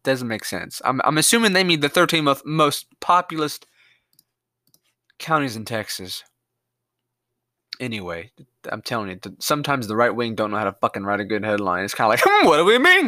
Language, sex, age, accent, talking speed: English, male, 20-39, American, 195 wpm